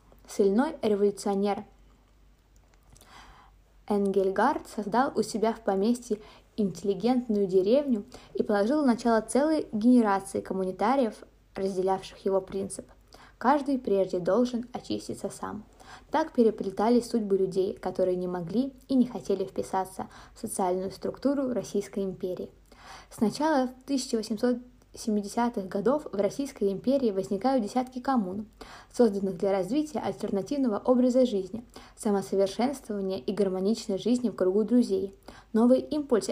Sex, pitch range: female, 195-245 Hz